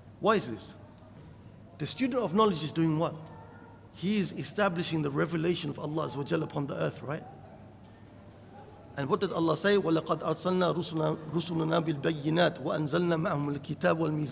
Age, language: 50-69, English